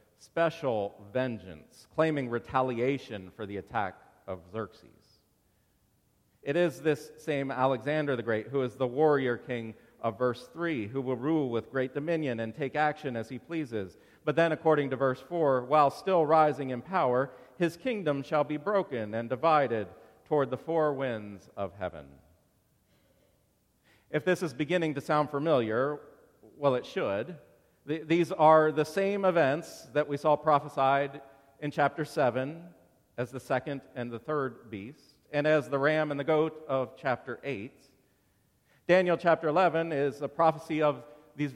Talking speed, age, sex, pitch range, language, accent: 155 wpm, 40-59, male, 120-155 Hz, English, American